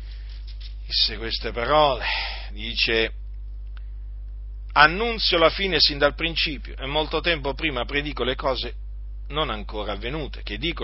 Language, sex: Italian, male